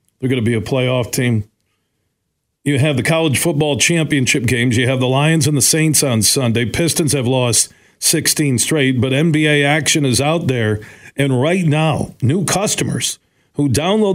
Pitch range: 135-170 Hz